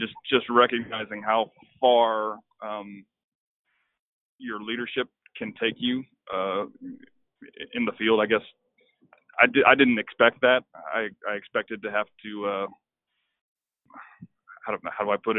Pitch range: 110-125 Hz